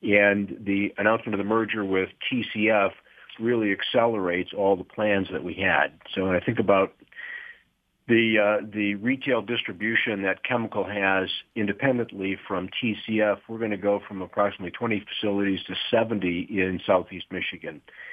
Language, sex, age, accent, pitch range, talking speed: English, male, 50-69, American, 95-105 Hz, 150 wpm